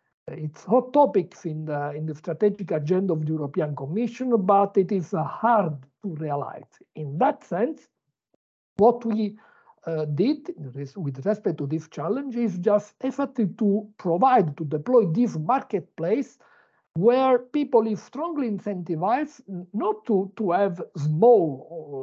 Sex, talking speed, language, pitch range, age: male, 135 wpm, English, 155-220 Hz, 50-69